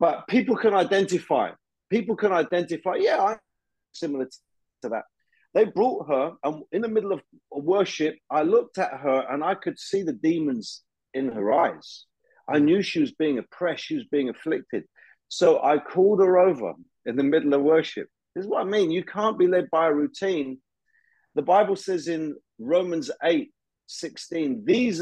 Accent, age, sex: British, 40-59, male